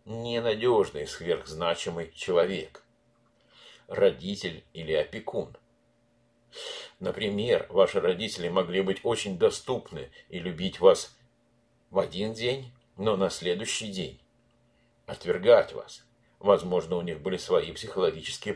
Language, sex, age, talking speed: Russian, male, 50-69, 100 wpm